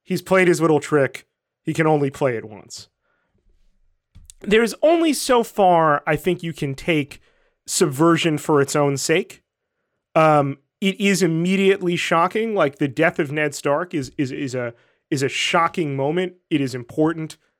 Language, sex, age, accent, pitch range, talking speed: English, male, 30-49, American, 150-195 Hz, 160 wpm